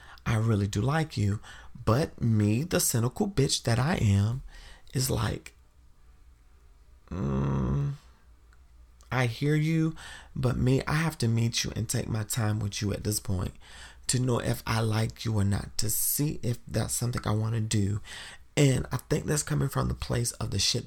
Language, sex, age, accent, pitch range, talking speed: English, male, 40-59, American, 100-125 Hz, 180 wpm